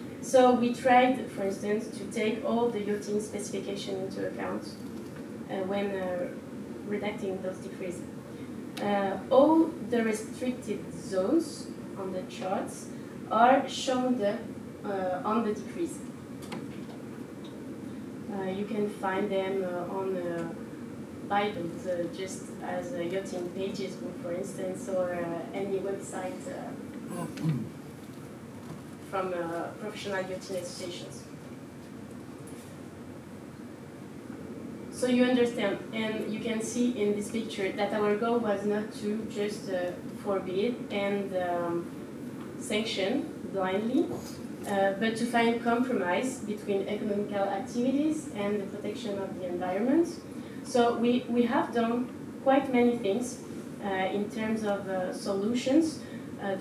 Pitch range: 195-245 Hz